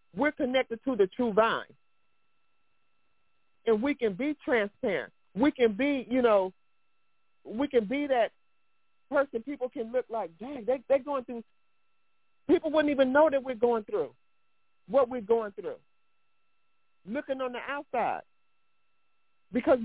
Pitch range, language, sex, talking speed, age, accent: 235-295 Hz, English, male, 140 wpm, 50-69, American